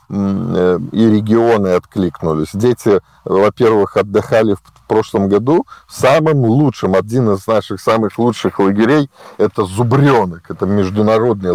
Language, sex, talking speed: Russian, male, 115 wpm